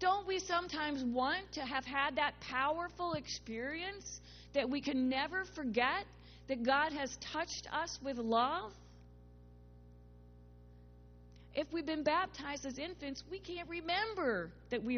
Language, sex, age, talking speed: English, female, 40-59, 130 wpm